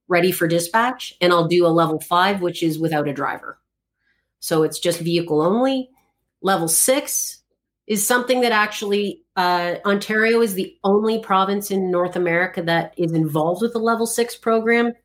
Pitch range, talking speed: 160-195 Hz, 170 wpm